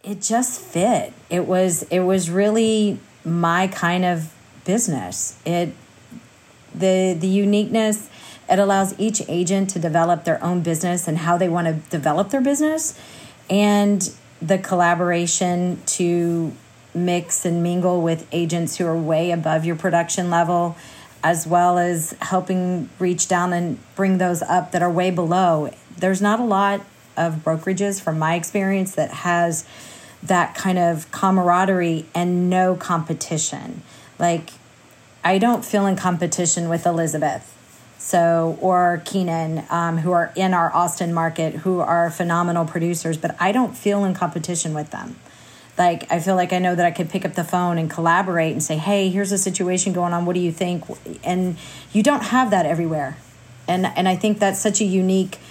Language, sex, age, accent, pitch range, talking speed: English, female, 40-59, American, 165-190 Hz, 165 wpm